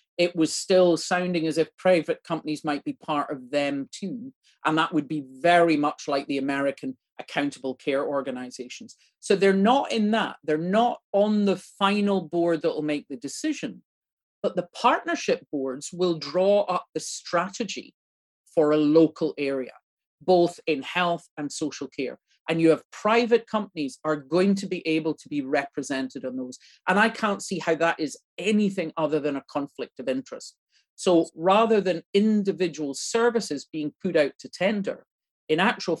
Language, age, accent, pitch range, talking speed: English, 40-59, British, 145-195 Hz, 170 wpm